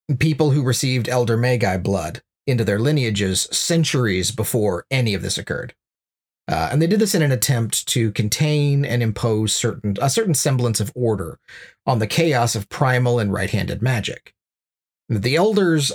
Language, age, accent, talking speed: English, 40-59, American, 160 wpm